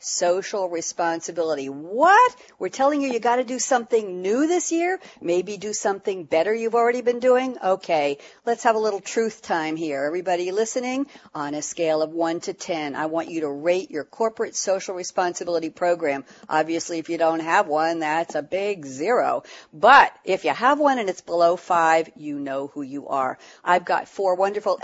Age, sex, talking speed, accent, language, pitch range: 50-69, female, 185 wpm, American, English, 165-240 Hz